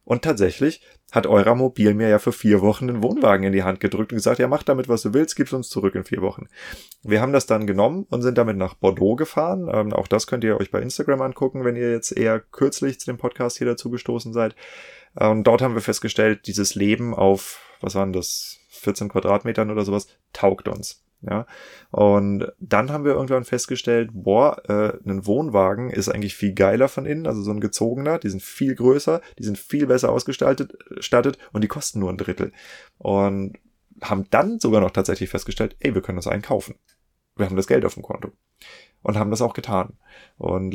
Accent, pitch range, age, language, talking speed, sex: German, 100-120 Hz, 30-49, German, 210 wpm, male